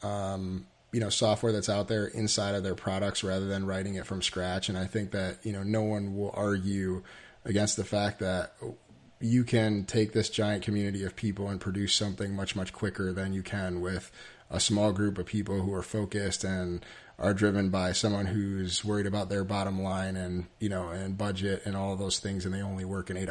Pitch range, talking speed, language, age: 95-105 Hz, 215 wpm, English, 30-49